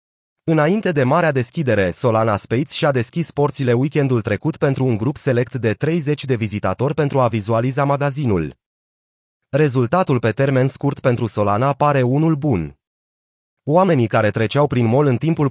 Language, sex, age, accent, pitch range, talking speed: Romanian, male, 30-49, native, 115-145 Hz, 150 wpm